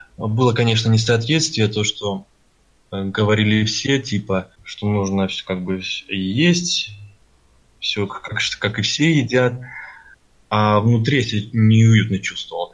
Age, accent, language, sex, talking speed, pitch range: 20-39, native, Russian, male, 120 wpm, 100-115 Hz